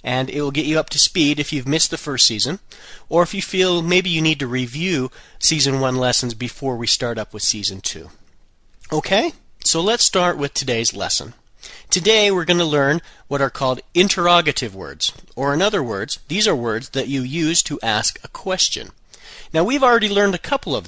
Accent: American